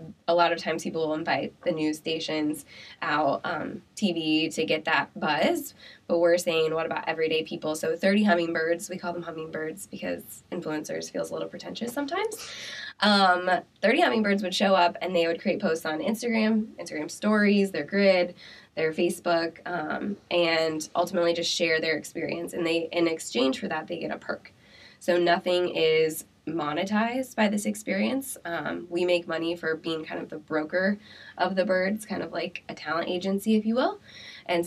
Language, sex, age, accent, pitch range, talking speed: English, female, 20-39, American, 160-185 Hz, 180 wpm